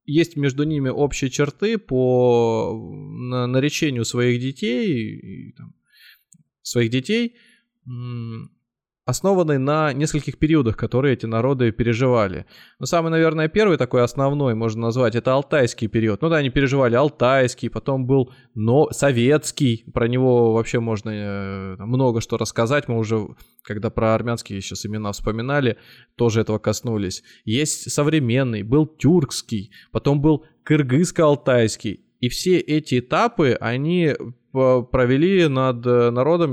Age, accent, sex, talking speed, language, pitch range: 20-39, native, male, 120 wpm, Russian, 120-150 Hz